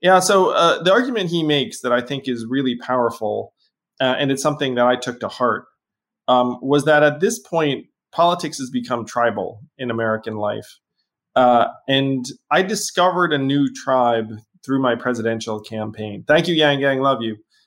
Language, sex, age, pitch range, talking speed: English, male, 20-39, 115-155 Hz, 175 wpm